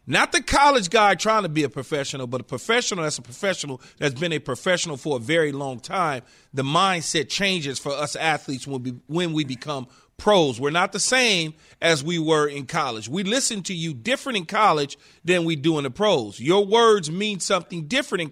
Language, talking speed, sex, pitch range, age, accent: English, 205 wpm, male, 150-215 Hz, 40-59, American